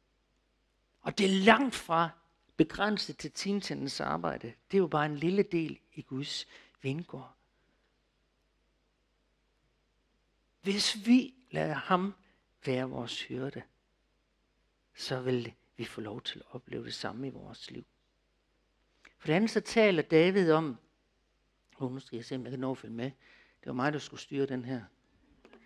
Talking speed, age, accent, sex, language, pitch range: 145 wpm, 60-79, native, male, Danish, 140-195 Hz